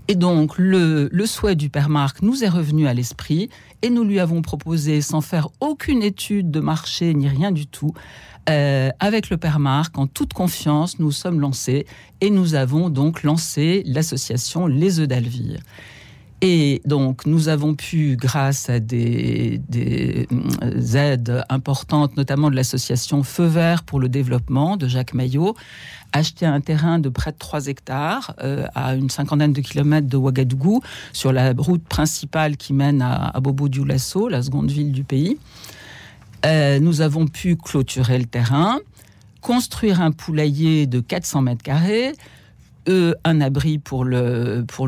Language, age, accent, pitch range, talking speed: French, 60-79, French, 125-165 Hz, 160 wpm